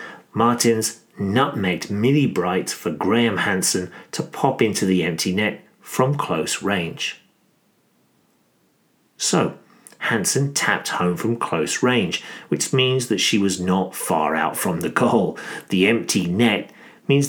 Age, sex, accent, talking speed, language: 40-59, male, British, 130 wpm, English